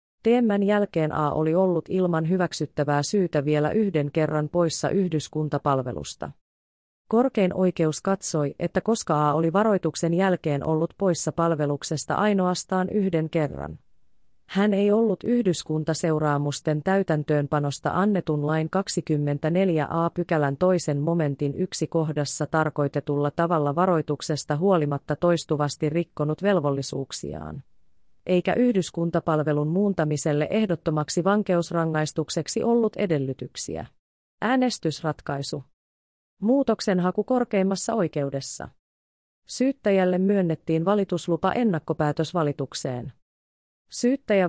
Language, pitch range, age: Finnish, 150-190 Hz, 30-49